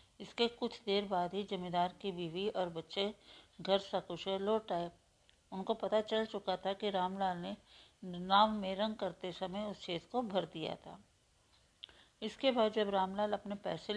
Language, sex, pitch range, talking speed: Hindi, female, 175-210 Hz, 165 wpm